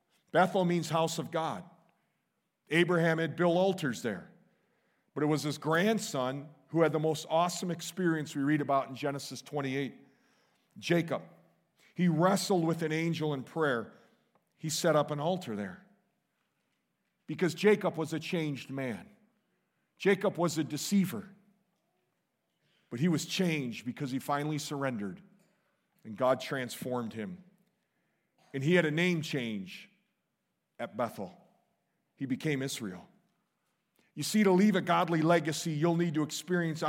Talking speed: 140 wpm